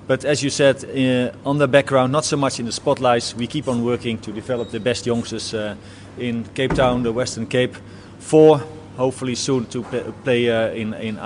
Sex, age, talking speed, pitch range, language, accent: male, 30-49, 205 wpm, 115-135 Hz, English, Dutch